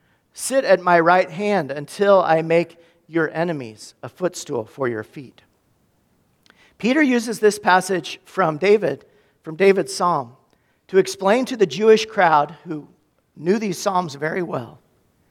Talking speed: 140 wpm